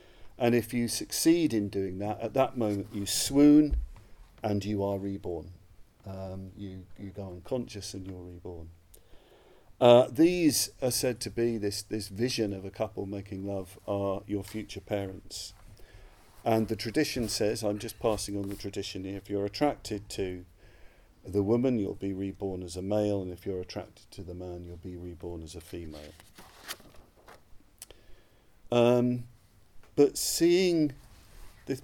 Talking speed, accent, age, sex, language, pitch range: 155 wpm, British, 40-59, male, English, 95-120 Hz